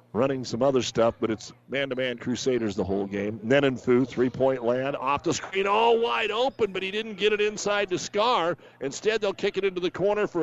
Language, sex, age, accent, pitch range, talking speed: English, male, 50-69, American, 130-170 Hz, 205 wpm